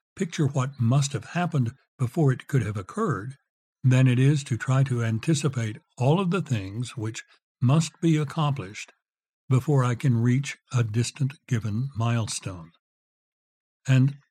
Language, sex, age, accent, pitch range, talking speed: English, male, 60-79, American, 115-145 Hz, 145 wpm